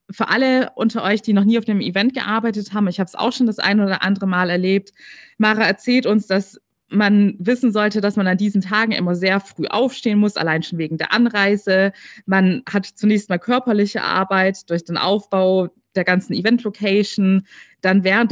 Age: 20-39